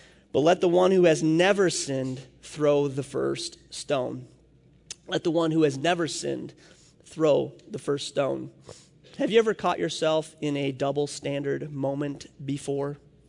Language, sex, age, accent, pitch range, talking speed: English, male, 30-49, American, 150-185 Hz, 155 wpm